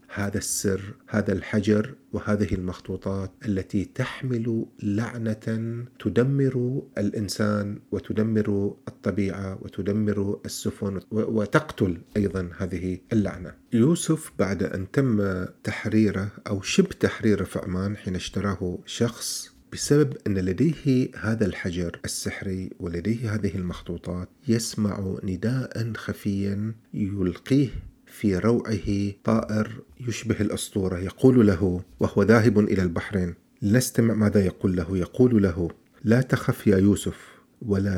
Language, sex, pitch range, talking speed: Arabic, male, 95-120 Hz, 105 wpm